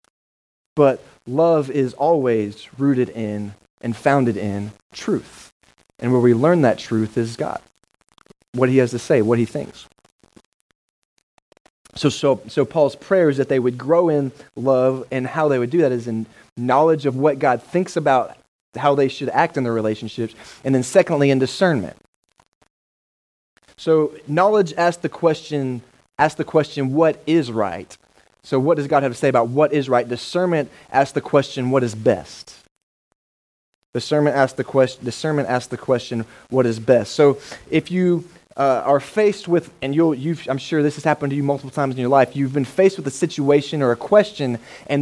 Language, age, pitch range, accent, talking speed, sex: English, 20-39, 125-155 Hz, American, 180 wpm, male